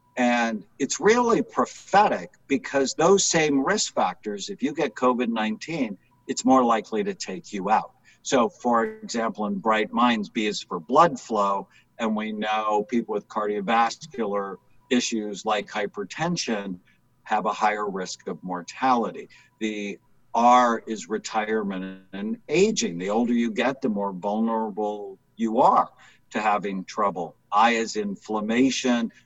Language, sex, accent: English, male, American